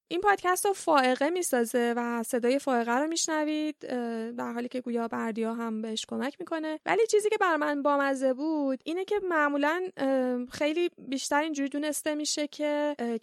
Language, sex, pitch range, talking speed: Persian, female, 225-285 Hz, 160 wpm